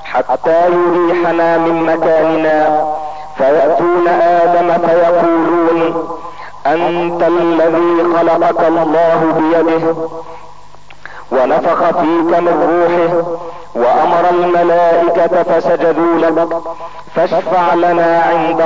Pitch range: 165-175 Hz